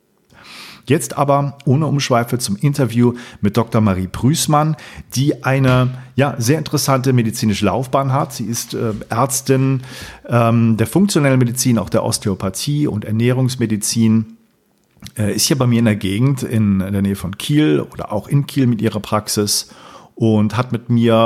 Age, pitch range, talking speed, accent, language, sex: 40-59, 105-130 Hz, 160 wpm, German, German, male